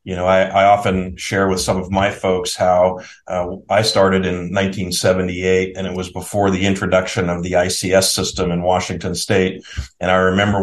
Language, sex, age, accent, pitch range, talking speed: English, male, 40-59, American, 95-110 Hz, 185 wpm